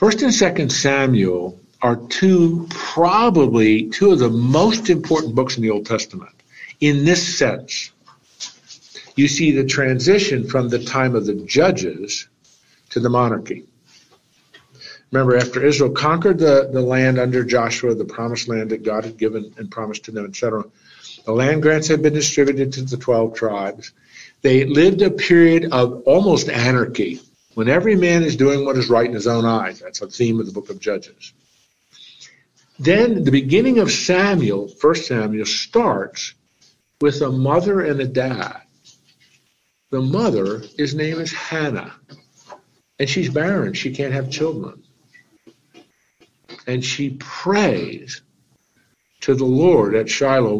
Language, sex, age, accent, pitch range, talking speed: English, male, 50-69, American, 115-155 Hz, 150 wpm